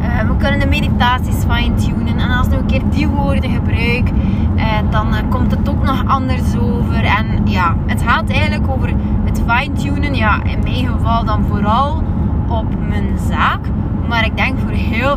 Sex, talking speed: female, 165 wpm